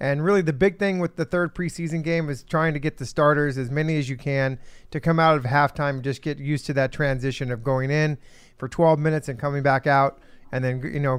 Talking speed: 245 wpm